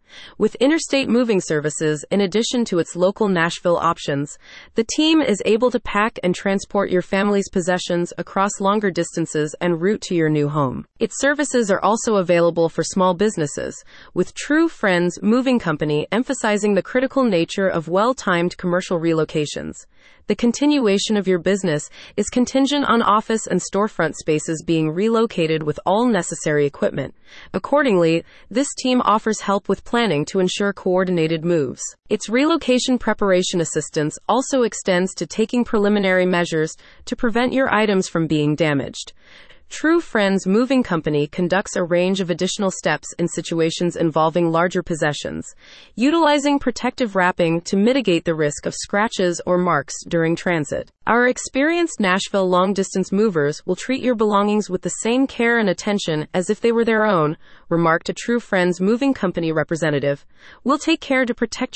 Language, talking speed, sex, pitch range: English, 155 wpm, female, 170-230 Hz